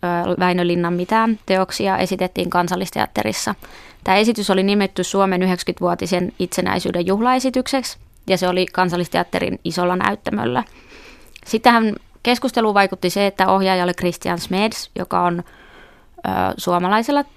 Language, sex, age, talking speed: Finnish, female, 20-39, 105 wpm